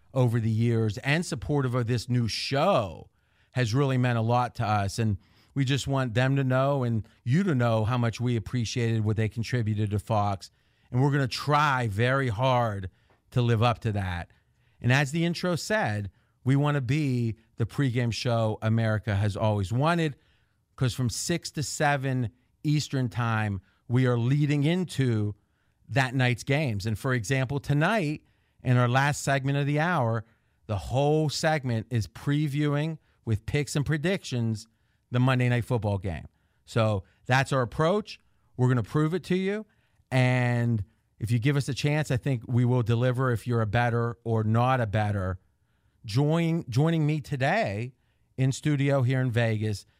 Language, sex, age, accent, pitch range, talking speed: English, male, 40-59, American, 110-145 Hz, 170 wpm